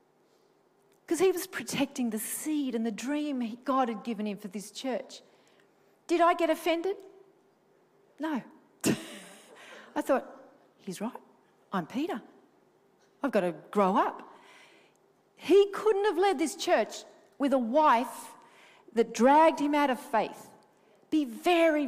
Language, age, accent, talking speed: English, 40-59, Australian, 135 wpm